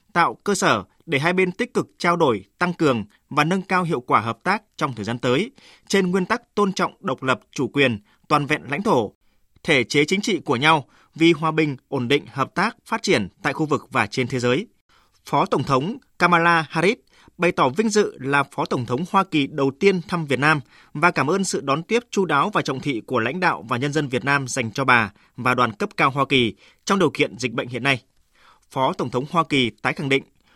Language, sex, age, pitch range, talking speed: Vietnamese, male, 20-39, 135-180 Hz, 240 wpm